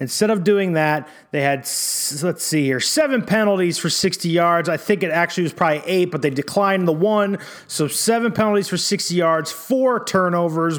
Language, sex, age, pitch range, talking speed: English, male, 30-49, 155-195 Hz, 190 wpm